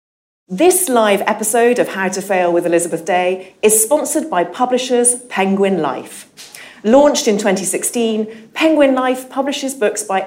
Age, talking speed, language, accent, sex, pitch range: 40-59, 140 wpm, English, British, female, 170-245 Hz